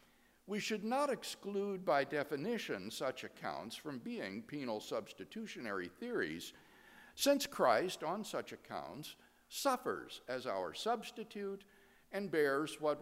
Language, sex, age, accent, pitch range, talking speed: English, male, 60-79, American, 160-260 Hz, 115 wpm